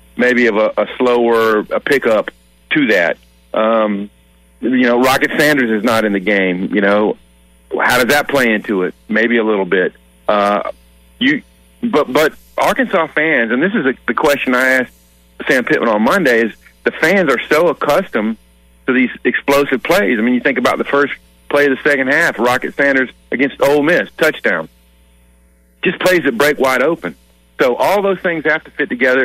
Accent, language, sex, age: American, English, male, 40-59